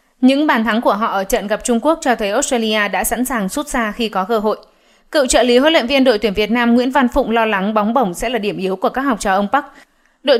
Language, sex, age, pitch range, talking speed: Vietnamese, female, 20-39, 210-265 Hz, 290 wpm